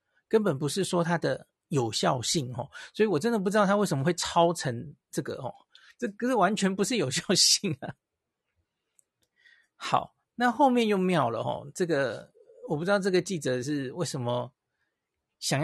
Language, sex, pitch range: Chinese, male, 140-185 Hz